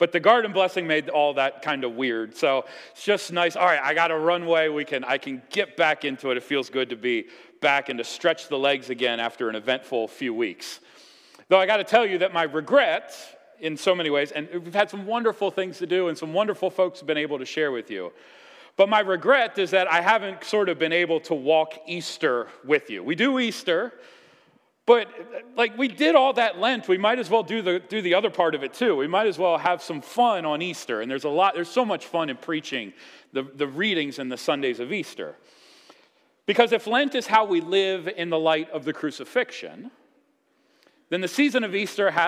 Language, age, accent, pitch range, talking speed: English, 40-59, American, 150-220 Hz, 225 wpm